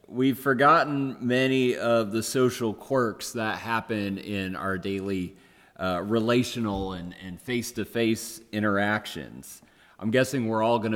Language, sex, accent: English, male, American